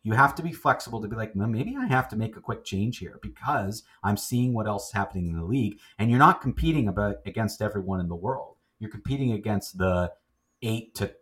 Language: English